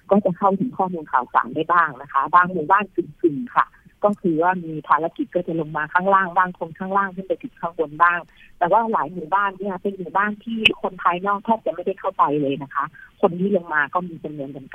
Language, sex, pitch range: Thai, female, 150-190 Hz